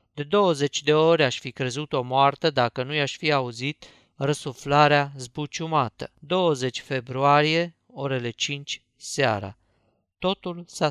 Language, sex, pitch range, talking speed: Romanian, male, 125-155 Hz, 125 wpm